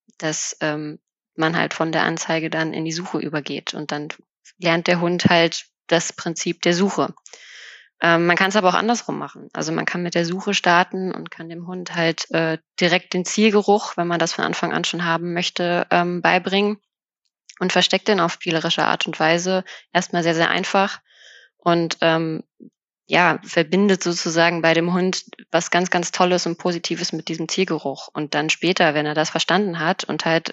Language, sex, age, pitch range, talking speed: German, female, 20-39, 160-180 Hz, 190 wpm